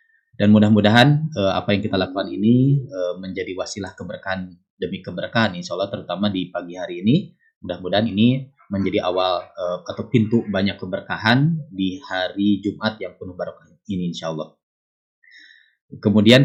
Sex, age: male, 20-39